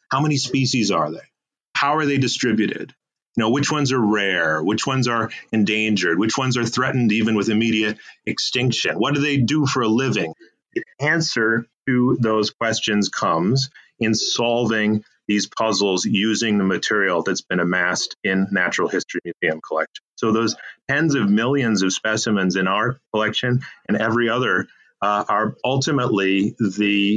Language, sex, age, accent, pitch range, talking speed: English, male, 30-49, American, 105-130 Hz, 160 wpm